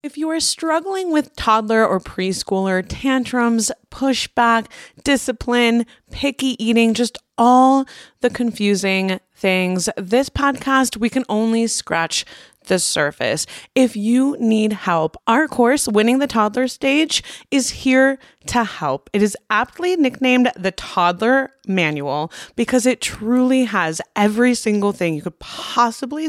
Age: 20-39